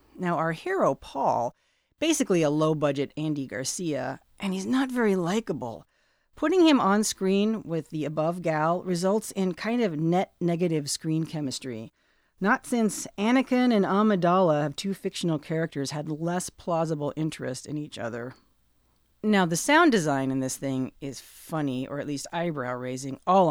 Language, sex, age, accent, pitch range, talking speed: English, female, 40-59, American, 145-200 Hz, 150 wpm